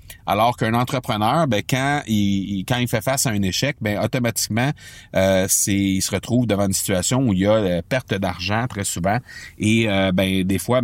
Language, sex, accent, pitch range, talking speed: French, male, Canadian, 95-125 Hz, 200 wpm